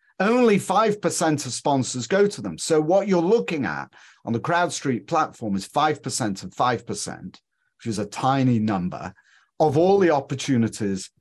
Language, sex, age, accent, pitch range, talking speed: English, male, 40-59, British, 110-155 Hz, 155 wpm